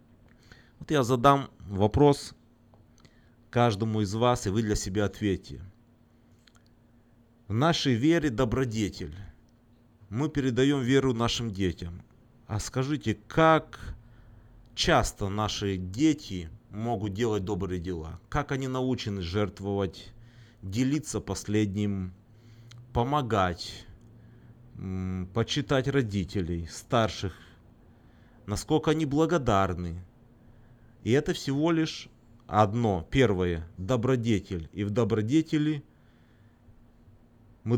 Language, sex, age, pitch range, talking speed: Russian, male, 30-49, 100-125 Hz, 85 wpm